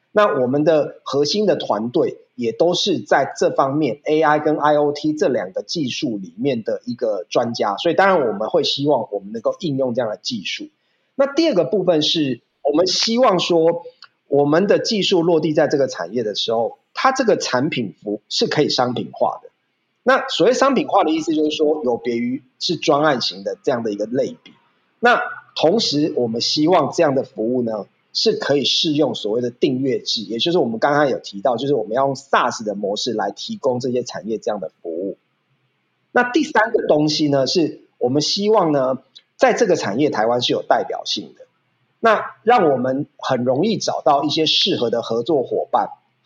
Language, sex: Chinese, male